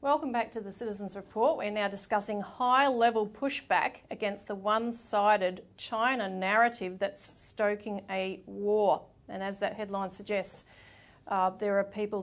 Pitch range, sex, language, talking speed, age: 195-225 Hz, female, English, 140 wpm, 40-59